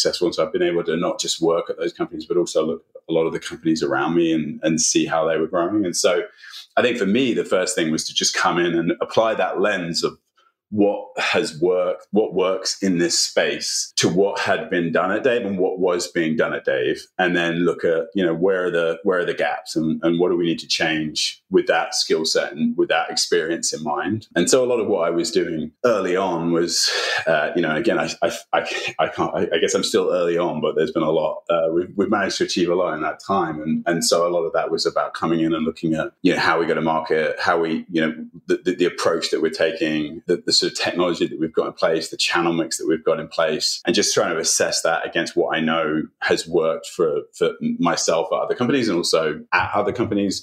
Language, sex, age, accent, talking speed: English, male, 30-49, British, 260 wpm